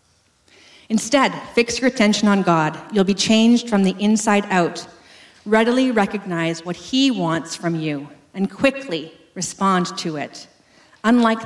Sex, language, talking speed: female, English, 135 wpm